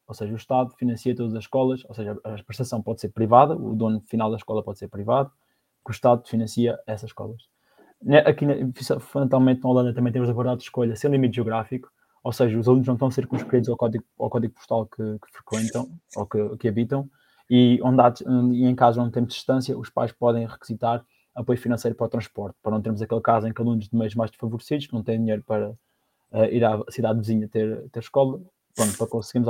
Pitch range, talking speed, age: 115-130 Hz, 220 wpm, 20-39